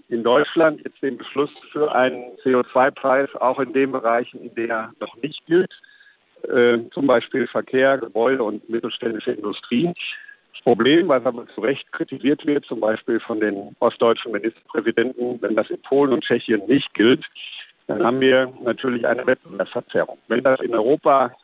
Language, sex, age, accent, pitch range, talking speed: German, male, 50-69, German, 115-140 Hz, 160 wpm